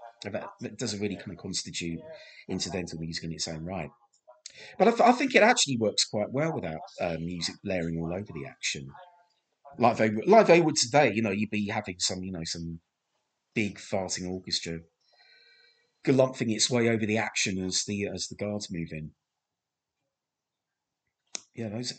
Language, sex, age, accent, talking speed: English, male, 30-49, British, 175 wpm